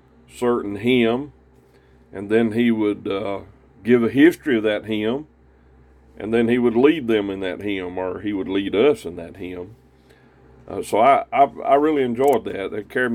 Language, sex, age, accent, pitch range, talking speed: English, male, 40-59, American, 80-110 Hz, 180 wpm